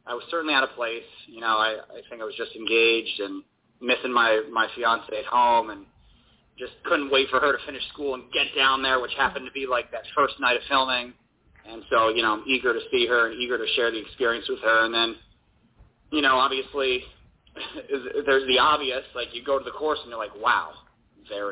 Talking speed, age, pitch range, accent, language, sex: 225 wpm, 30-49, 115-150 Hz, American, English, male